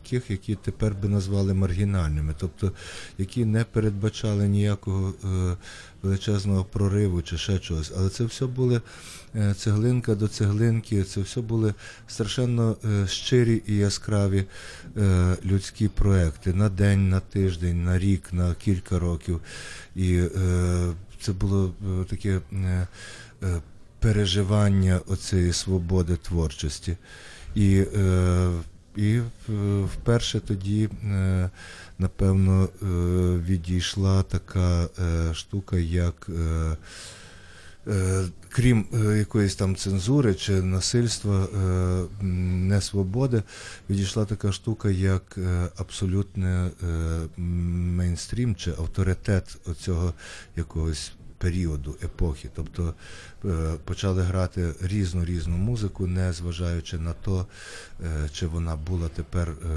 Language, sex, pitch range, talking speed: Ukrainian, male, 90-100 Hz, 95 wpm